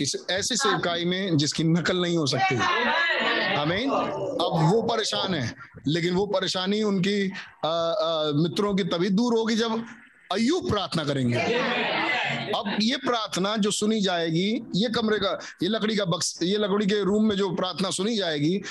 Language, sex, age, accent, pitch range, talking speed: Hindi, male, 50-69, native, 145-205 Hz, 105 wpm